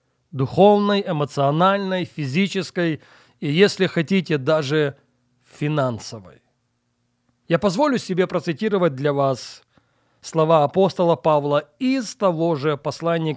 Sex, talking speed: male, 95 wpm